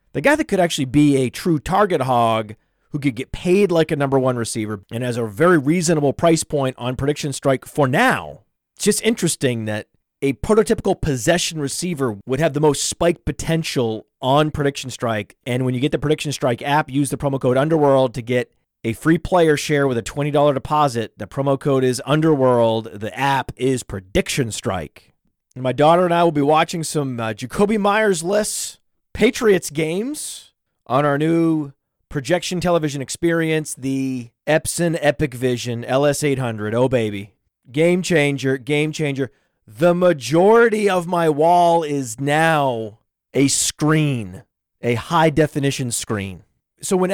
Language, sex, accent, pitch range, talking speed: English, male, American, 130-165 Hz, 160 wpm